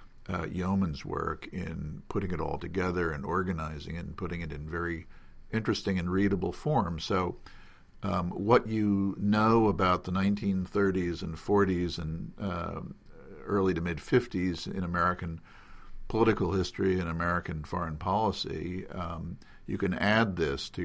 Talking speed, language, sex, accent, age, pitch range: 145 wpm, English, male, American, 50-69, 80-95 Hz